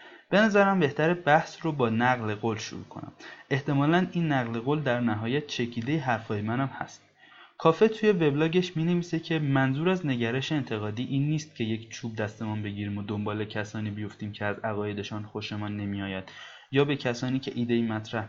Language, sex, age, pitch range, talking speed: Persian, male, 20-39, 110-145 Hz, 175 wpm